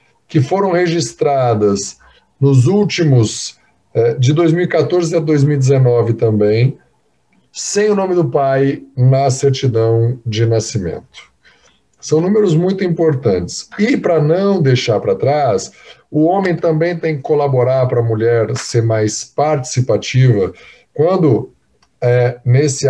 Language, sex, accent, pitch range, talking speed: Portuguese, male, Brazilian, 120-150 Hz, 115 wpm